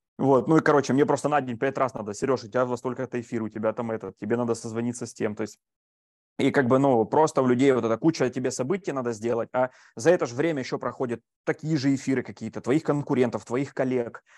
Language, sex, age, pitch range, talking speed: Russian, male, 20-39, 115-140 Hz, 235 wpm